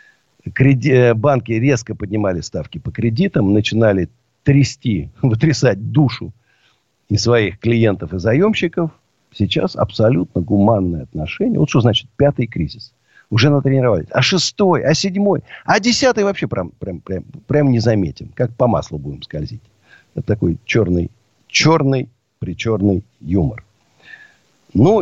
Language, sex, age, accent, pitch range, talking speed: Russian, male, 50-69, native, 100-140 Hz, 125 wpm